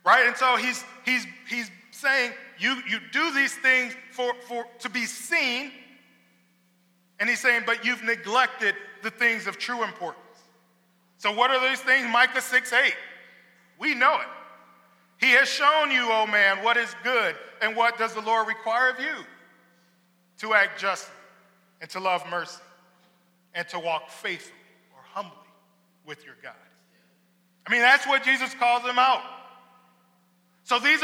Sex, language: male, English